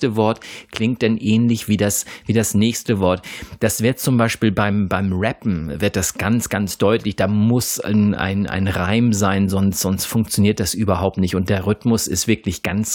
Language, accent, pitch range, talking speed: German, German, 100-115 Hz, 190 wpm